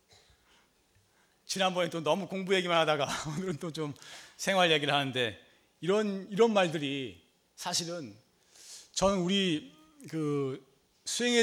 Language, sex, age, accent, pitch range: Korean, male, 30-49, native, 115-175 Hz